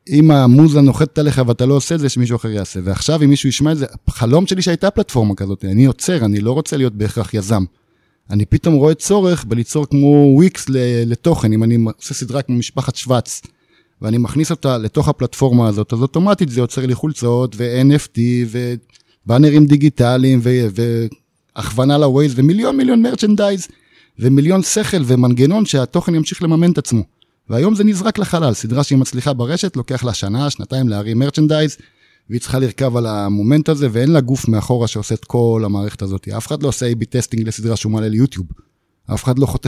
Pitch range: 115-150 Hz